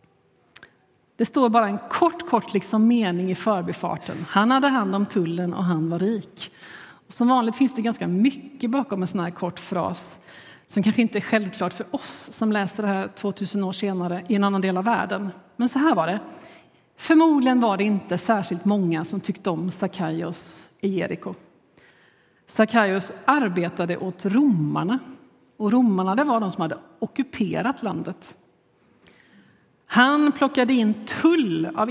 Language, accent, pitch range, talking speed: Swedish, native, 185-245 Hz, 165 wpm